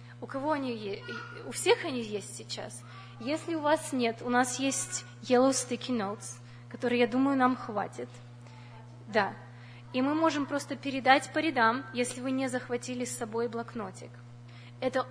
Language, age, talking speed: Russian, 20-39, 155 wpm